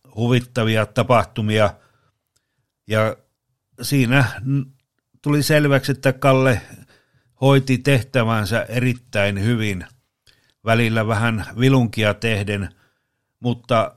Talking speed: 75 wpm